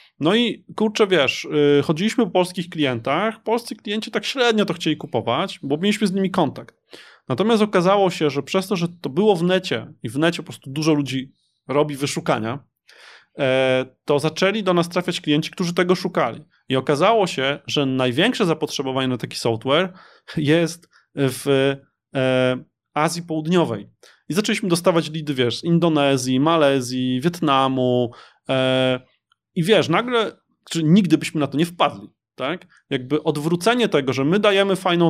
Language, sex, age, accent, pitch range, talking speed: Polish, male, 20-39, native, 145-200 Hz, 150 wpm